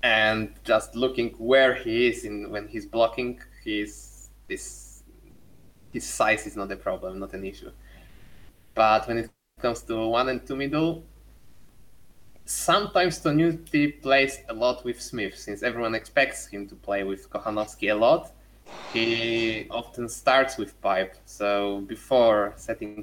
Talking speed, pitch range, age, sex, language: 145 wpm, 100-120 Hz, 20-39, male, English